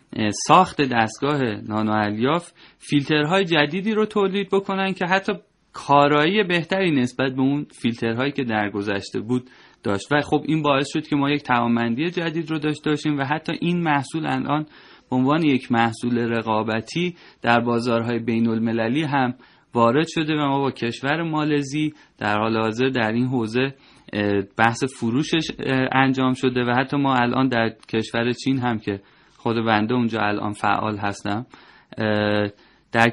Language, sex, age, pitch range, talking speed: Persian, male, 30-49, 115-155 Hz, 150 wpm